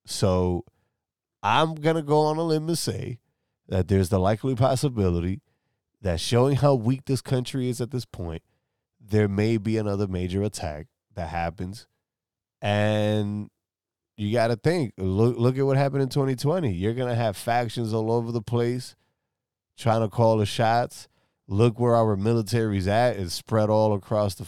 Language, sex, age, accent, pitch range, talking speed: English, male, 20-39, American, 95-120 Hz, 165 wpm